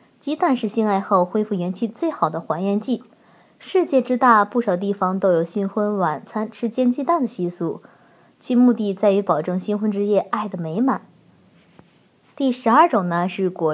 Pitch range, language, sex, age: 195-250 Hz, Chinese, female, 20-39